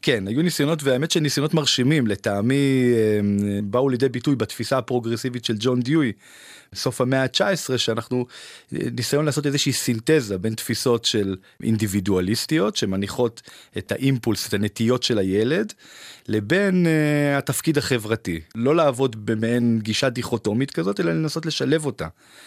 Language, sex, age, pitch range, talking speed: Hebrew, male, 30-49, 110-140 Hz, 130 wpm